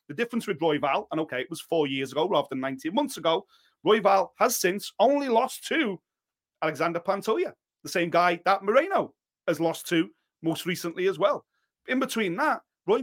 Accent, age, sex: British, 30-49, male